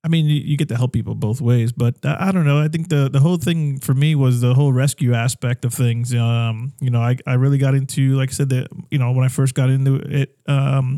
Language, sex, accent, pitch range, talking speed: English, male, American, 125-140 Hz, 270 wpm